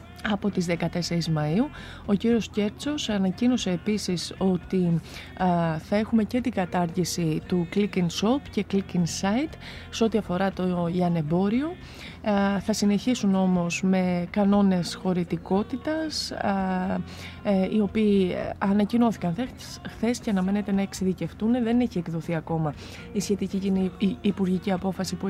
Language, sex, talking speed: Greek, female, 135 wpm